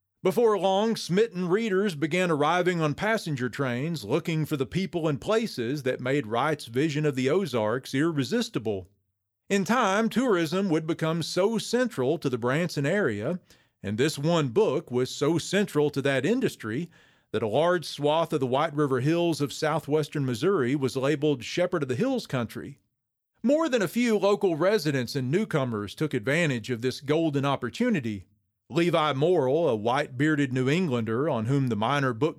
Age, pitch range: 40-59, 130-170 Hz